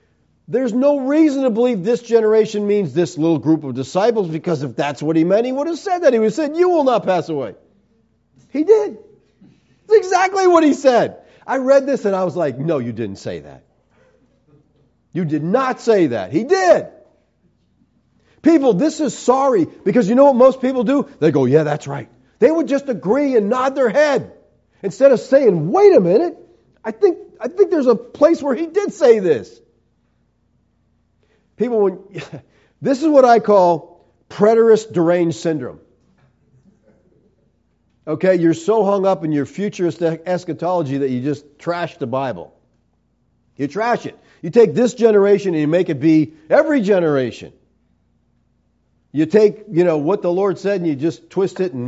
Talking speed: 180 wpm